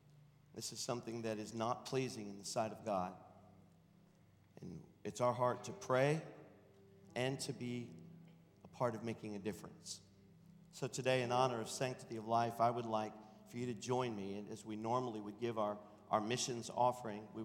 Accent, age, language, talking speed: American, 50-69, English, 185 wpm